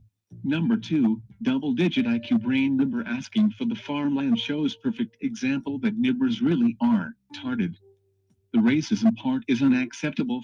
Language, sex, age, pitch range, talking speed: English, male, 50-69, 195-260 Hz, 130 wpm